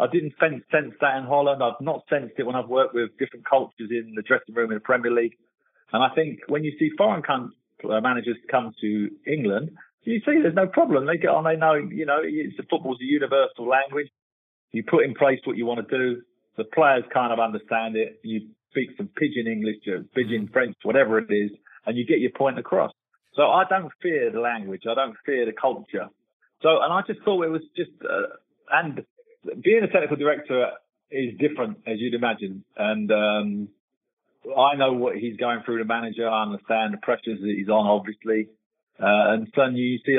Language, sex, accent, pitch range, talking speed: English, male, British, 110-135 Hz, 210 wpm